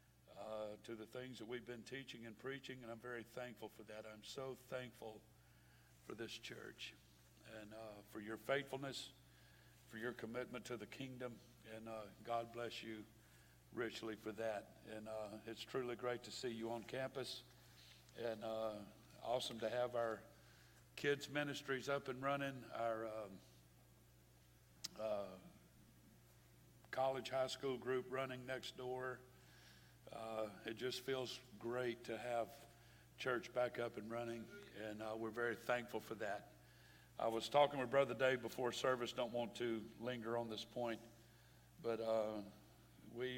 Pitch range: 110-125 Hz